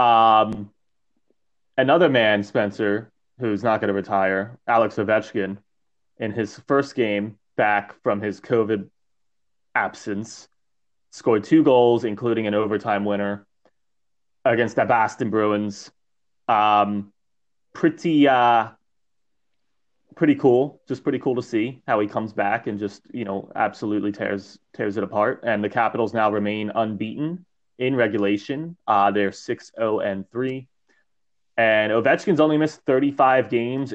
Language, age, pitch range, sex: English, 20-39, 100-120 Hz, male